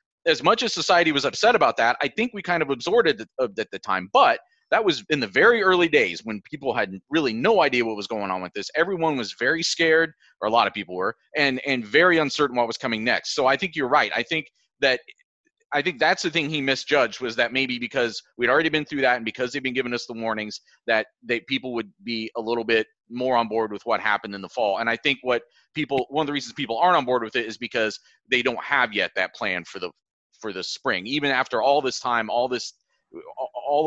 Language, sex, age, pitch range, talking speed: English, male, 30-49, 115-150 Hz, 250 wpm